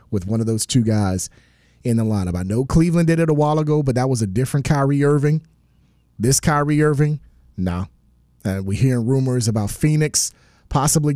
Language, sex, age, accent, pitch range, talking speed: English, male, 30-49, American, 110-145 Hz, 190 wpm